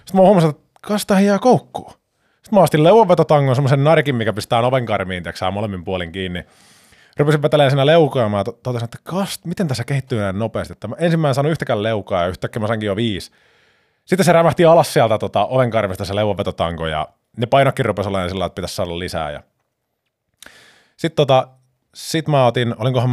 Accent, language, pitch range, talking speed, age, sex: native, Finnish, 95-135 Hz, 180 wpm, 20-39, male